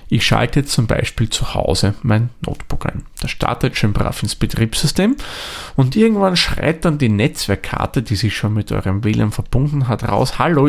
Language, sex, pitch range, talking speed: German, male, 105-145 Hz, 180 wpm